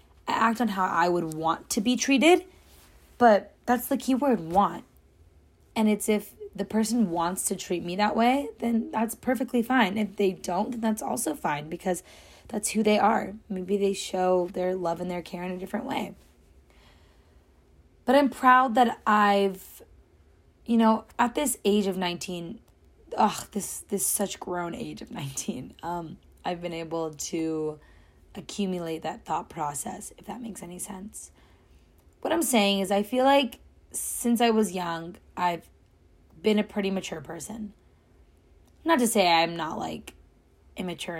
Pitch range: 165-220 Hz